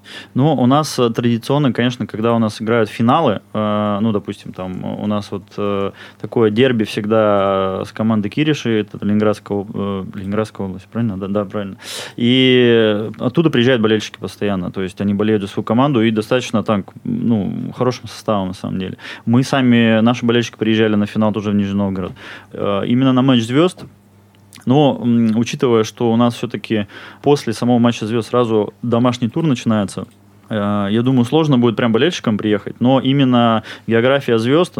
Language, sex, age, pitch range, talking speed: Russian, male, 20-39, 105-120 Hz, 165 wpm